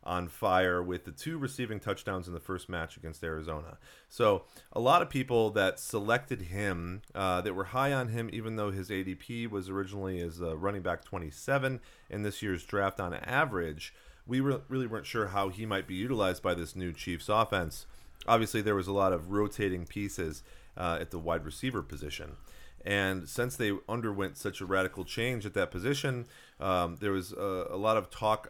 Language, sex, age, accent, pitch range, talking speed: English, male, 30-49, American, 90-110 Hz, 190 wpm